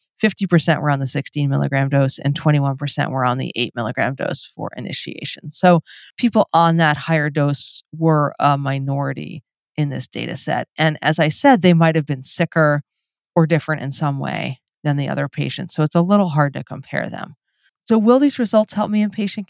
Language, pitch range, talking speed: English, 150-185 Hz, 190 wpm